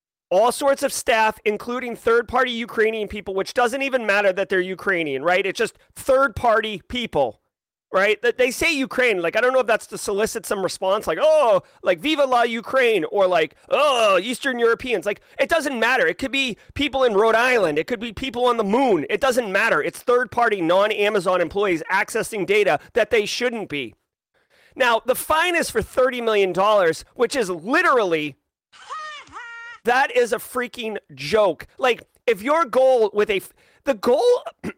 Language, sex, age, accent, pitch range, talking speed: English, male, 30-49, American, 205-275 Hz, 175 wpm